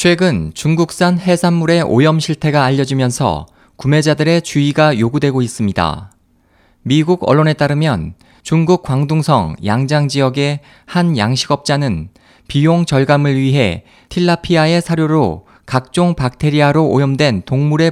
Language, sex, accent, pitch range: Korean, male, native, 125-165 Hz